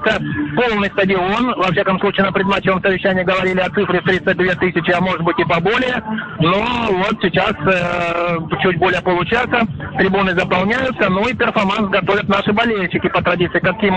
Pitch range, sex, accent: 175-210 Hz, male, native